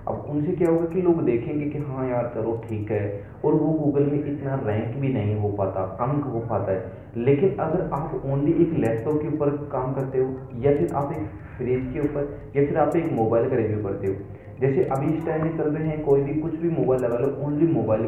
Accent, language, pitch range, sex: native, Hindi, 110-145 Hz, male